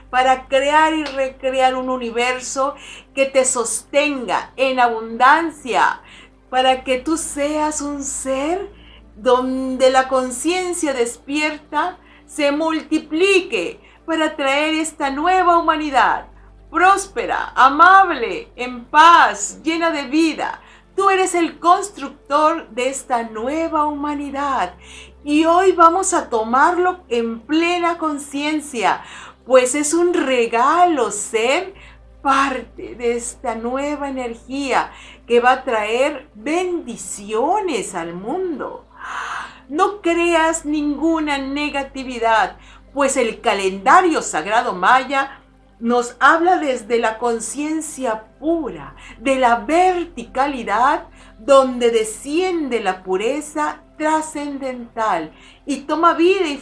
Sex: female